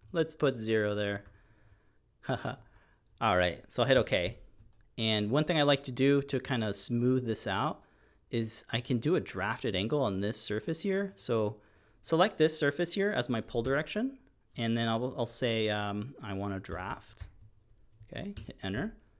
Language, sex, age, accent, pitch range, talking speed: English, male, 30-49, American, 105-135 Hz, 175 wpm